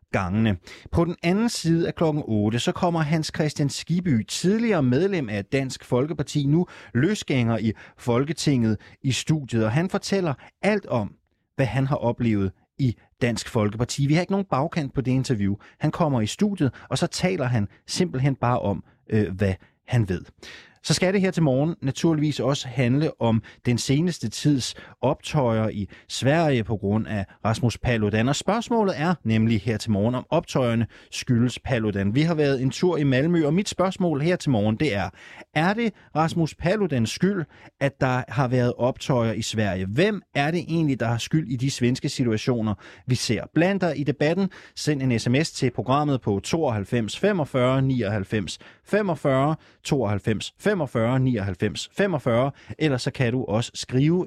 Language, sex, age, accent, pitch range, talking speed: Danish, male, 30-49, native, 110-160 Hz, 170 wpm